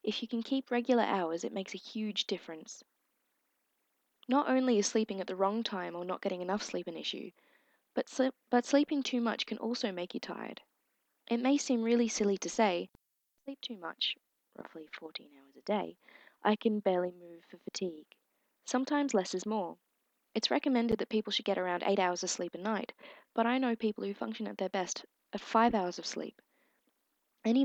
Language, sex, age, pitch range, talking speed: English, female, 20-39, 190-255 Hz, 195 wpm